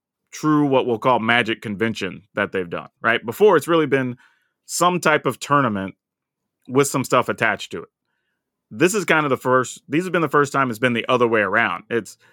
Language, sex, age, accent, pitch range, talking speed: English, male, 30-49, American, 115-150 Hz, 210 wpm